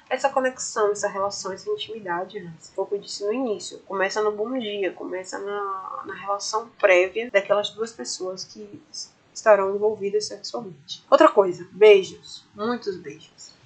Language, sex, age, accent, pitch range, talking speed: Portuguese, female, 20-39, Brazilian, 190-235 Hz, 155 wpm